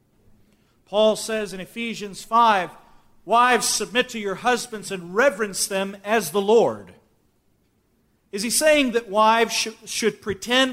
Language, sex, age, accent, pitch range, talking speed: English, male, 40-59, American, 210-265 Hz, 135 wpm